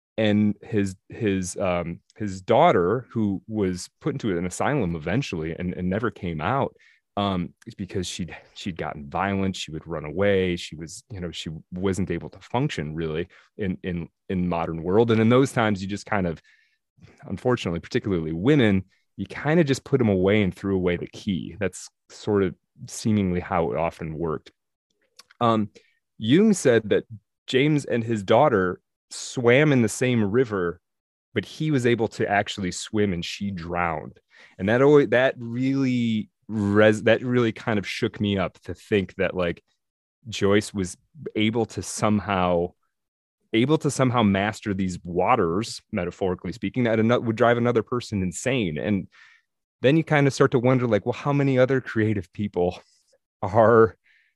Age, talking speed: 30-49, 165 wpm